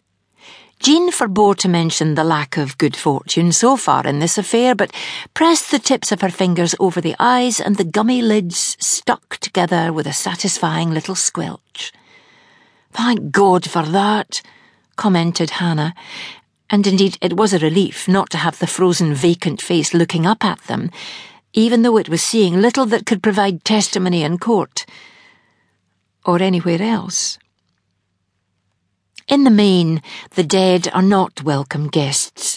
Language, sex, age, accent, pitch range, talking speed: English, female, 60-79, British, 155-210 Hz, 150 wpm